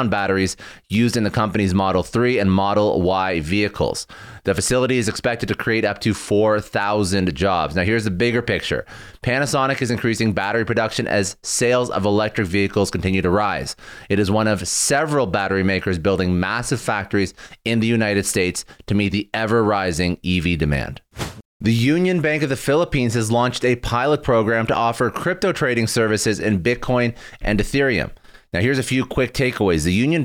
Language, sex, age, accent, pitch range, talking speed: English, male, 30-49, American, 100-125 Hz, 175 wpm